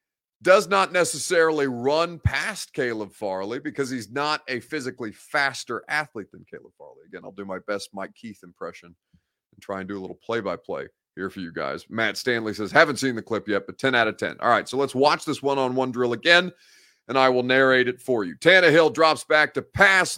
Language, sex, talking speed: English, male, 210 wpm